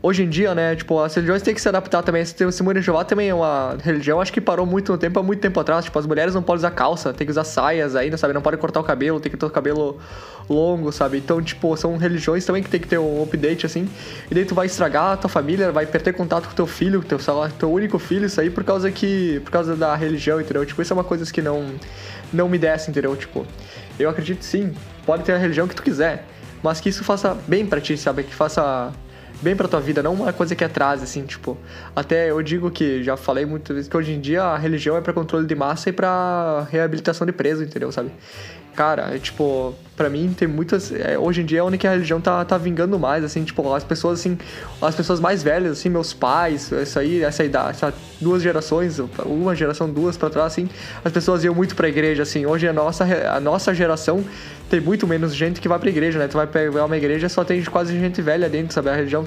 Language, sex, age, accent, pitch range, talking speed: Portuguese, male, 20-39, Brazilian, 150-180 Hz, 250 wpm